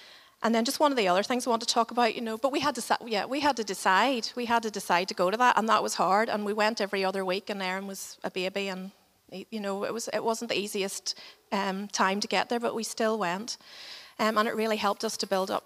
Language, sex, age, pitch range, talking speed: English, female, 30-49, 200-245 Hz, 290 wpm